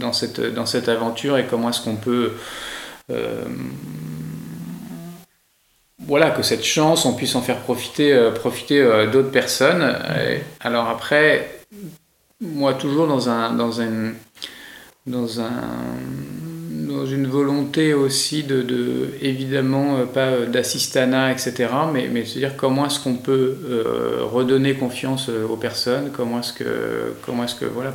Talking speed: 140 wpm